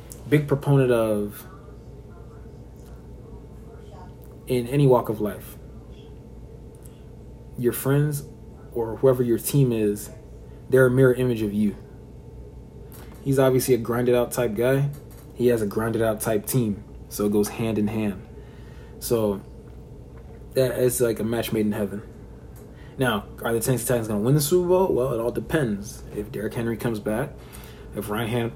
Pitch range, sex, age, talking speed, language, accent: 105-130 Hz, male, 20-39, 150 wpm, English, American